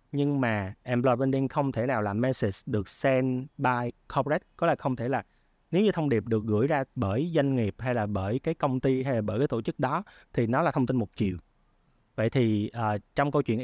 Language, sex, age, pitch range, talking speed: Vietnamese, male, 20-39, 110-135 Hz, 240 wpm